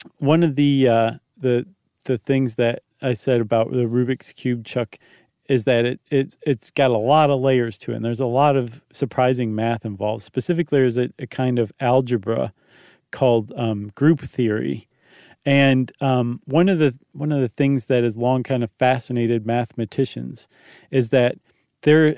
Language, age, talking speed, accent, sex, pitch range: English, 40-59, 180 wpm, American, male, 120-145 Hz